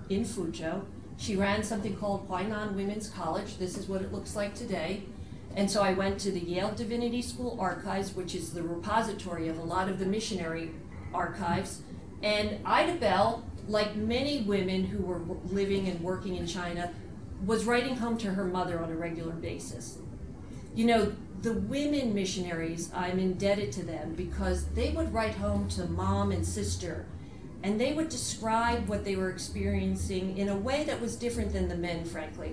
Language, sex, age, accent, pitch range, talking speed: English, female, 40-59, American, 180-225 Hz, 175 wpm